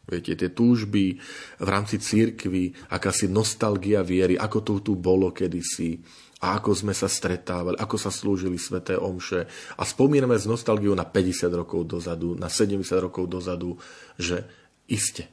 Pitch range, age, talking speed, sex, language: 90-110 Hz, 40-59, 150 wpm, male, Slovak